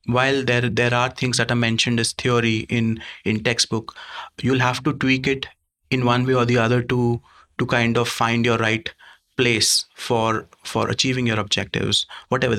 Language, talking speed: English, 180 wpm